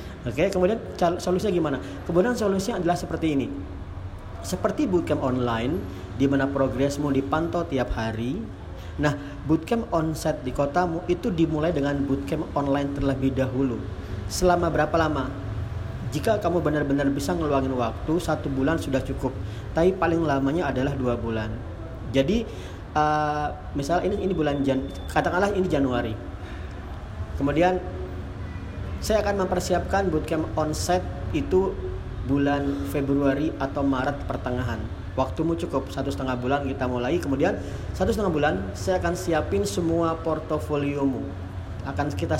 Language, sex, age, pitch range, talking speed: Indonesian, male, 40-59, 100-155 Hz, 125 wpm